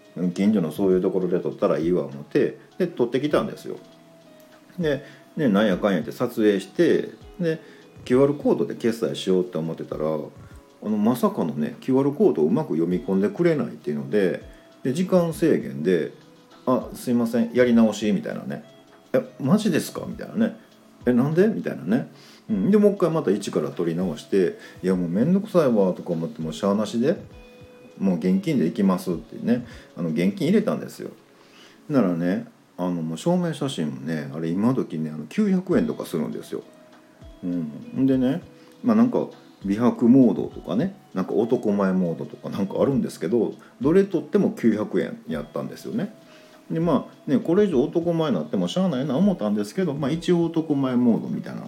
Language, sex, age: Japanese, male, 40-59